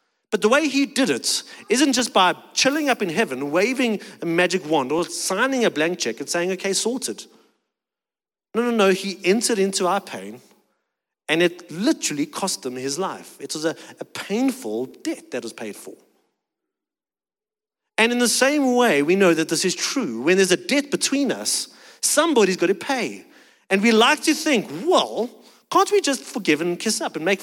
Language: English